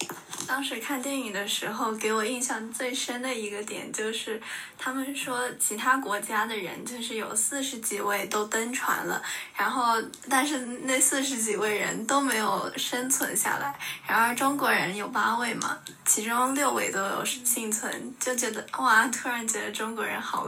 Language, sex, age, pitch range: Chinese, female, 10-29, 220-270 Hz